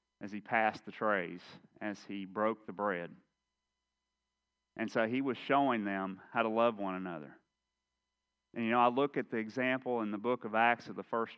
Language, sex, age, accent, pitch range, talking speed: English, male, 30-49, American, 95-120 Hz, 195 wpm